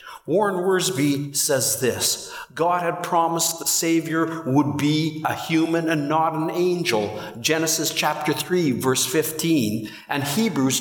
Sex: male